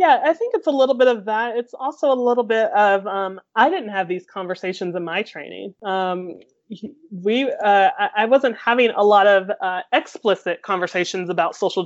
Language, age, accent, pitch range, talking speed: English, 30-49, American, 185-215 Hz, 190 wpm